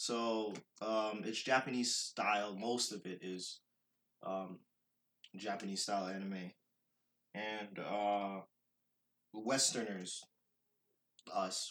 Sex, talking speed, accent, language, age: male, 85 wpm, American, English, 20-39